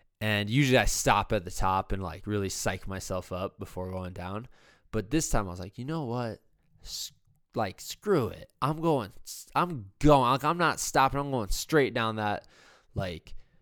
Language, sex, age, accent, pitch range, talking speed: English, male, 20-39, American, 105-145 Hz, 185 wpm